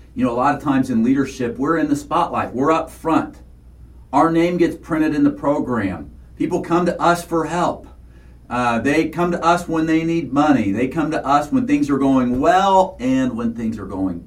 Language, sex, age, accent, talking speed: English, male, 40-59, American, 215 wpm